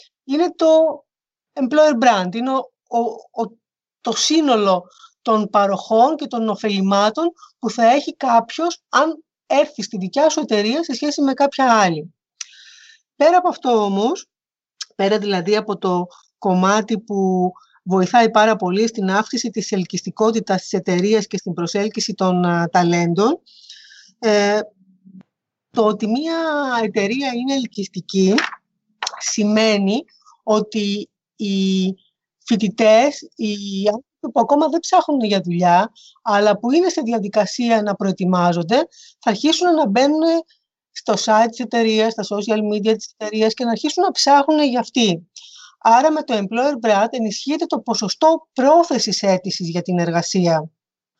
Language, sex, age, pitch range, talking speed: Greek, female, 30-49, 200-285 Hz, 130 wpm